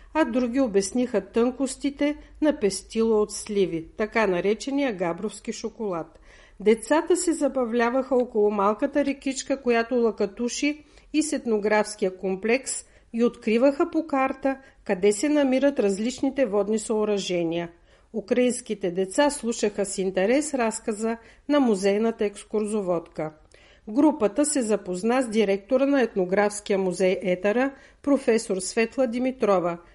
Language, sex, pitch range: Bulgarian, female, 205-265 Hz